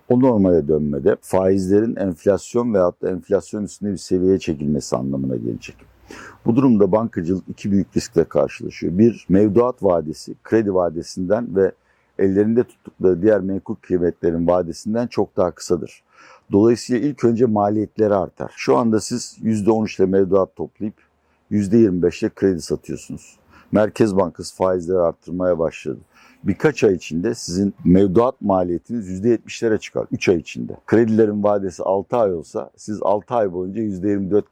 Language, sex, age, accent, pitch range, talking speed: Turkish, male, 60-79, native, 90-110 Hz, 135 wpm